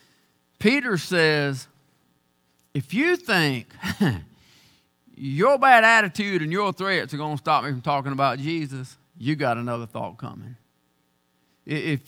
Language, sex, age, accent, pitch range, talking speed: English, male, 50-69, American, 130-195 Hz, 130 wpm